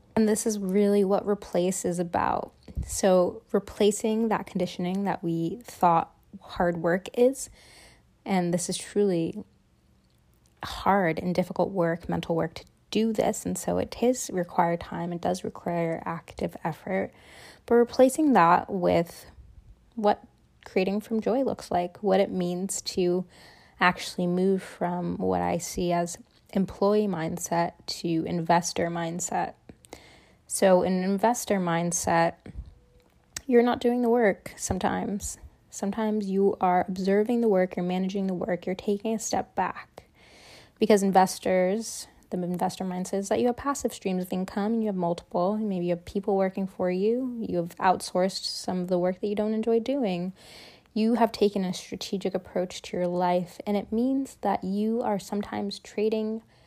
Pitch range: 180-215 Hz